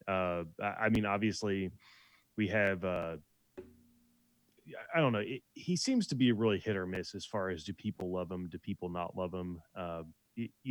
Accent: American